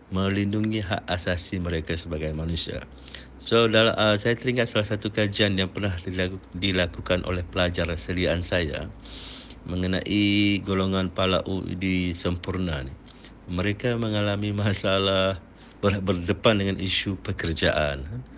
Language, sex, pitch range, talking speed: Malay, male, 90-105 Hz, 120 wpm